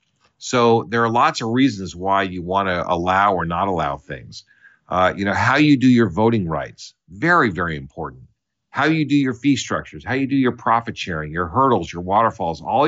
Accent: American